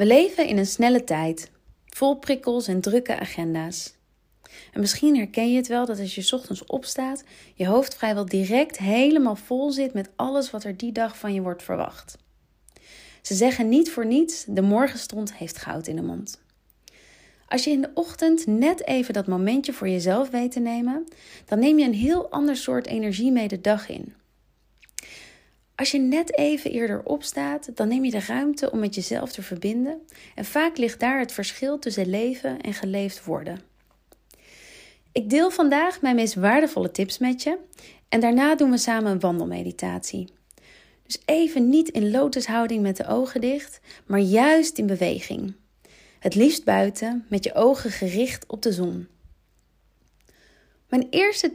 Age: 30-49